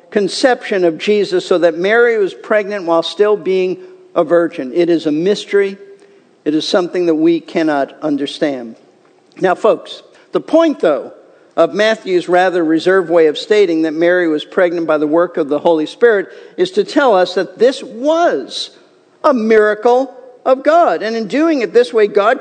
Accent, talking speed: American, 175 wpm